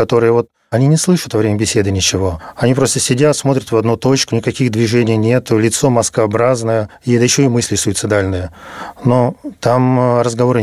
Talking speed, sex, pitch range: 165 wpm, male, 110-130 Hz